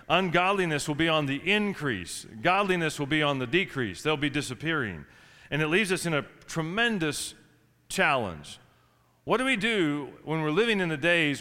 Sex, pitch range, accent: male, 135-180 Hz, American